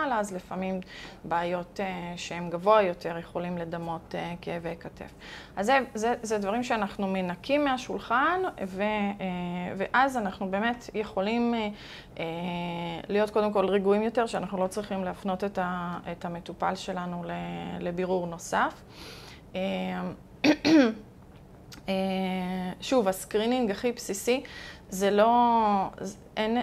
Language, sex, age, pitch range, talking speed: English, female, 20-39, 185-215 Hz, 105 wpm